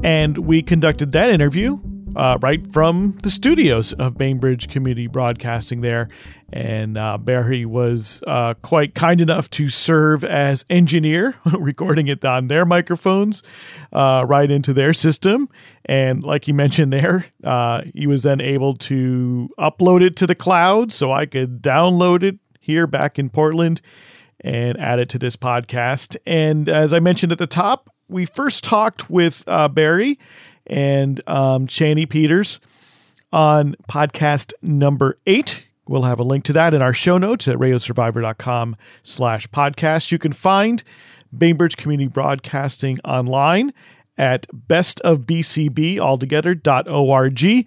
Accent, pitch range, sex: American, 125-165 Hz, male